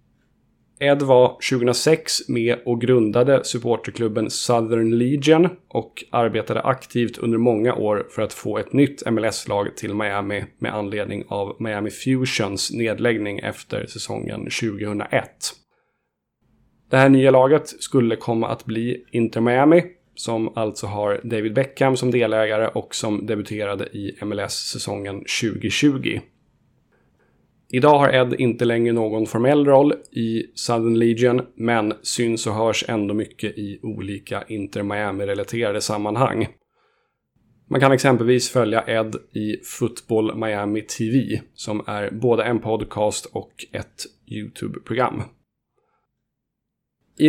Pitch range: 110-125 Hz